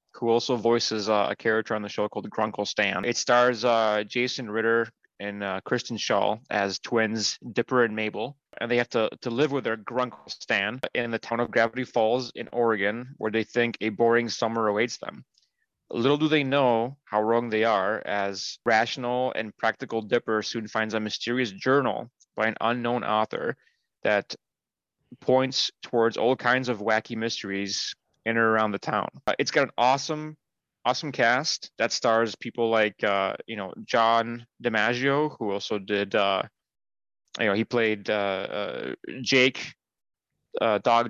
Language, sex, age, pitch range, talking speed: English, male, 20-39, 110-125 Hz, 170 wpm